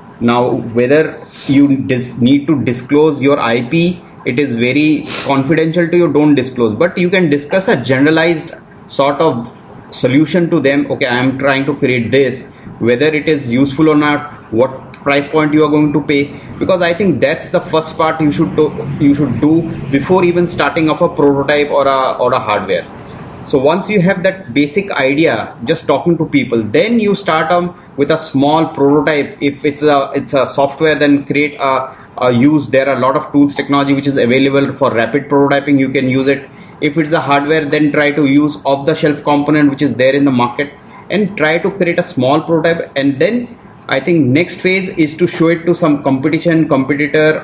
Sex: male